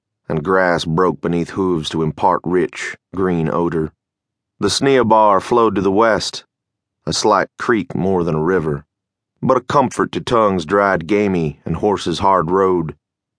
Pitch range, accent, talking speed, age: 80-110 Hz, American, 150 wpm, 30-49